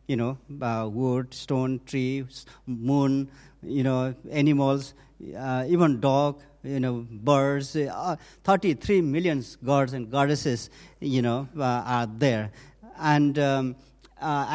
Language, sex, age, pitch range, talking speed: English, male, 50-69, 125-145 Hz, 125 wpm